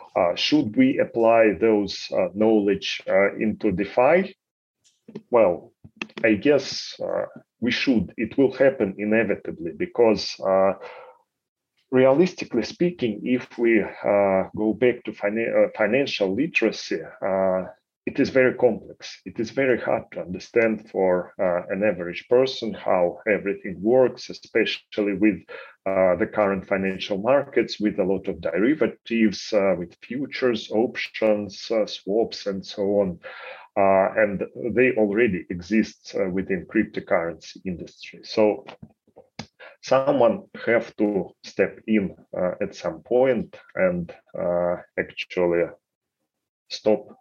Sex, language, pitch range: male, English, 95-120 Hz